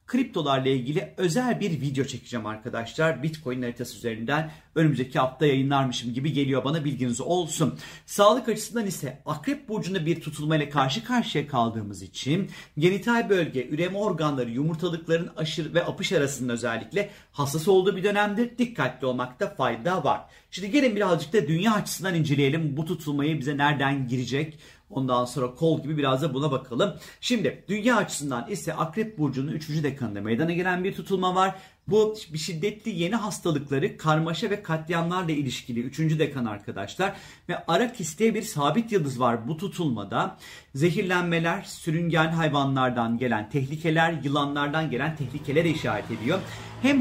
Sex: male